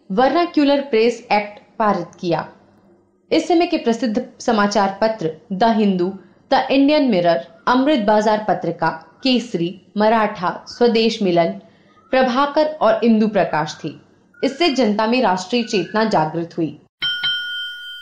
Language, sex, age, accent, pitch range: Hindi, female, 30-49, native, 195-275 Hz